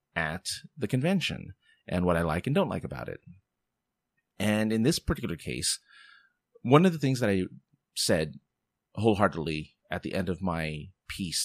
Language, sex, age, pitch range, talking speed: English, male, 30-49, 85-120 Hz, 160 wpm